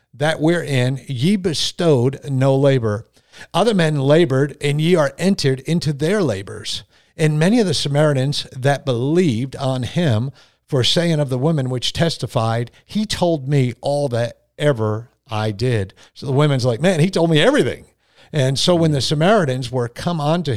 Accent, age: American, 50-69